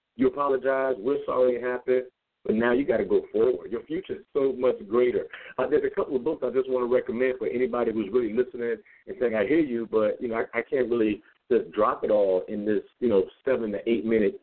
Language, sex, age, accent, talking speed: English, male, 50-69, American, 240 wpm